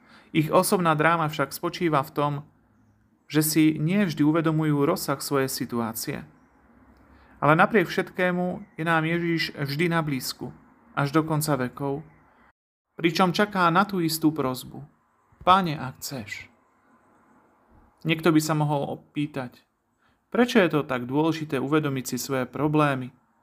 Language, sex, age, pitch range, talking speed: Slovak, male, 40-59, 135-170 Hz, 130 wpm